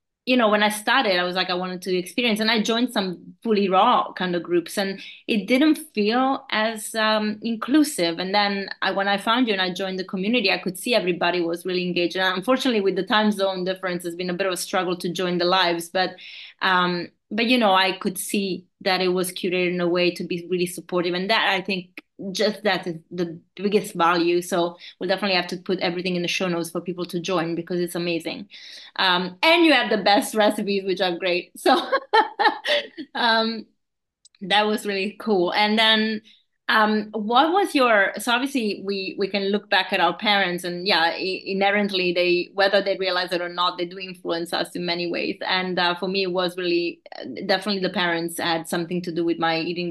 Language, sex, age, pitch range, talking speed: English, female, 30-49, 180-210 Hz, 215 wpm